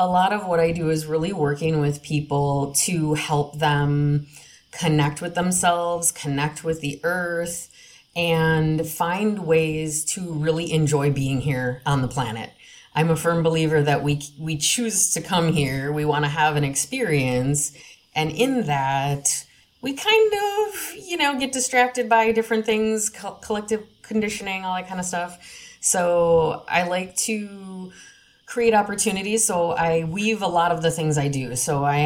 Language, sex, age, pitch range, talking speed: English, female, 30-49, 145-175 Hz, 165 wpm